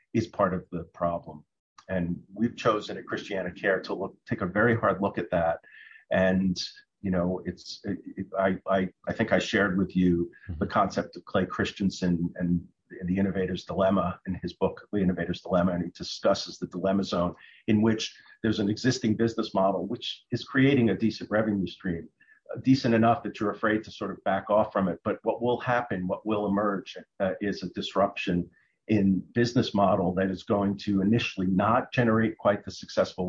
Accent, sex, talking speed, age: American, male, 190 wpm, 50-69